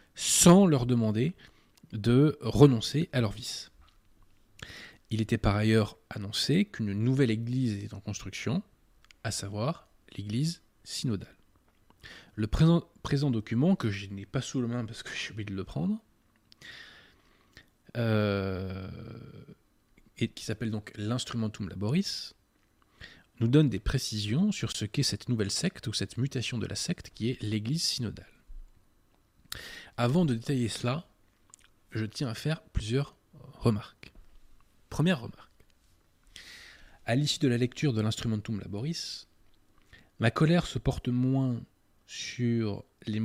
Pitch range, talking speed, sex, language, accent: 105-135 Hz, 130 wpm, male, French, French